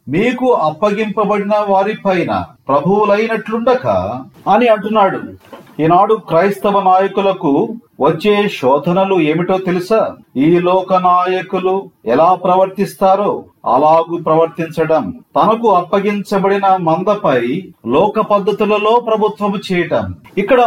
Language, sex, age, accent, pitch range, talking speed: Telugu, male, 40-59, native, 175-210 Hz, 80 wpm